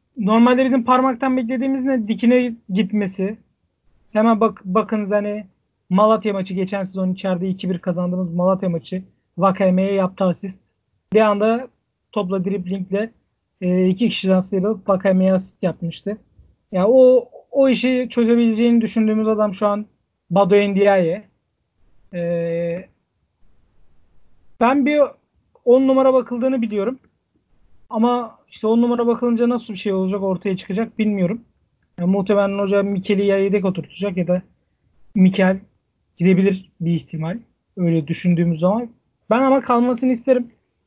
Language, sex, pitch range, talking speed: Turkish, male, 185-225 Hz, 125 wpm